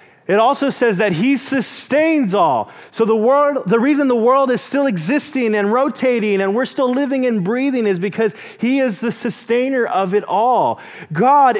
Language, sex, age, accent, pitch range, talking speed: English, male, 30-49, American, 150-225 Hz, 180 wpm